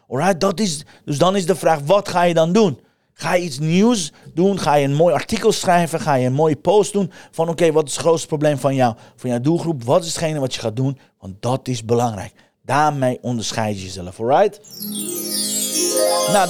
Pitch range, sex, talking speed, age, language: 135-180 Hz, male, 220 wpm, 40-59, Dutch